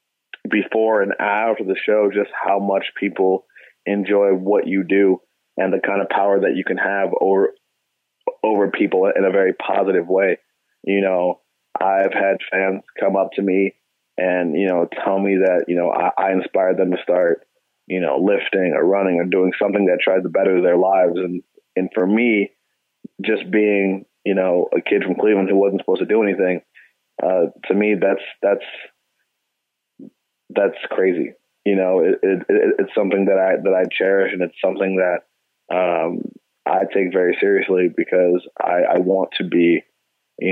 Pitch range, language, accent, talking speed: 95-115 Hz, English, American, 180 wpm